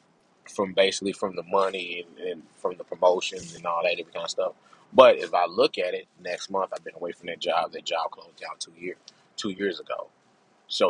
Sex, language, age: male, English, 30-49